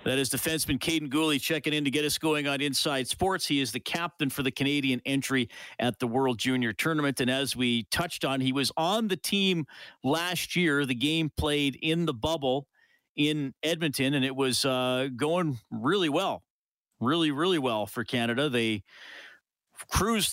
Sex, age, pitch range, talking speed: male, 40-59, 125-180 Hz, 180 wpm